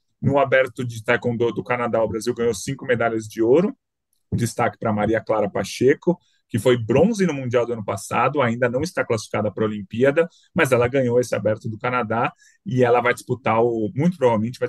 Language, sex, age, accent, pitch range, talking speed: Portuguese, male, 20-39, Brazilian, 115-140 Hz, 195 wpm